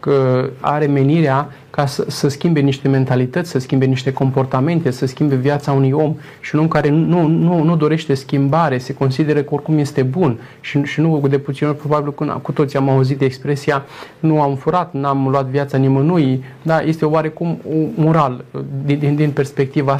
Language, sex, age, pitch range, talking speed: Romanian, male, 20-39, 140-160 Hz, 185 wpm